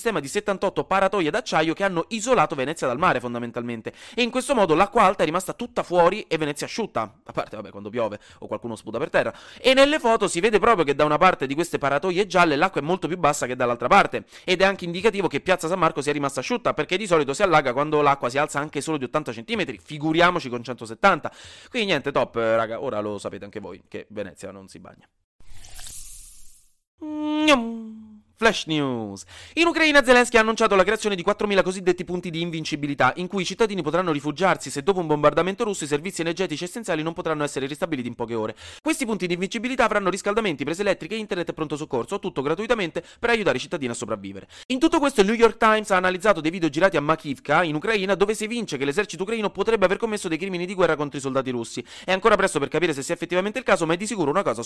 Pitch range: 145-215 Hz